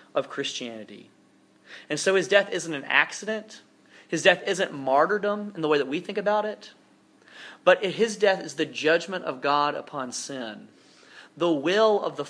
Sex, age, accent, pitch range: male, 30-49, American, 140-190 Hz